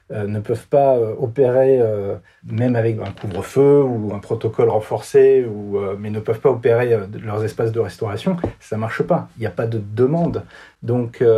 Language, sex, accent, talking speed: French, male, French, 175 wpm